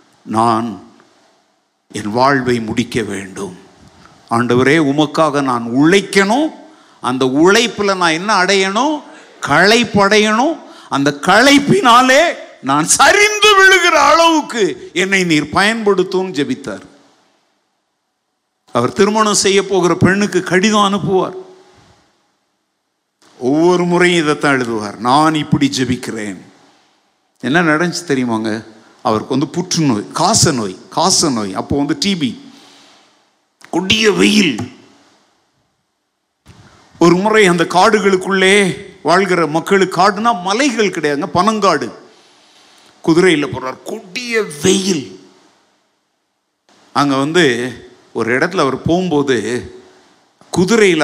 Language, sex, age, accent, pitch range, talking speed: Tamil, male, 50-69, native, 140-205 Hz, 90 wpm